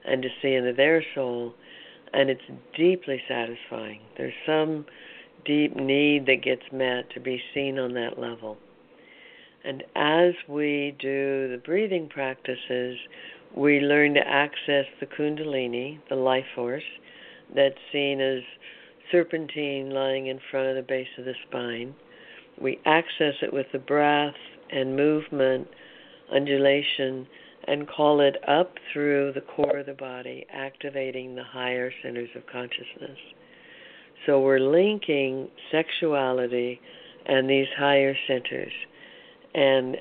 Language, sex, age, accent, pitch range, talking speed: English, female, 60-79, American, 130-145 Hz, 130 wpm